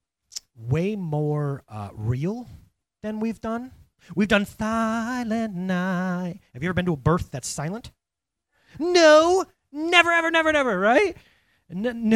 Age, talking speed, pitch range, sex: 30-49, 135 wpm, 160-240 Hz, male